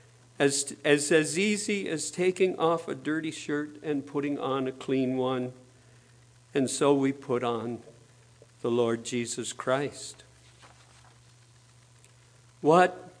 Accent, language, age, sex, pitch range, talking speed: American, English, 50-69, male, 125-170 Hz, 120 wpm